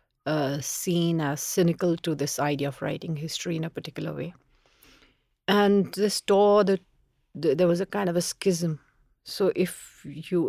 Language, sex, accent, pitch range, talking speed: English, female, Indian, 155-180 Hz, 165 wpm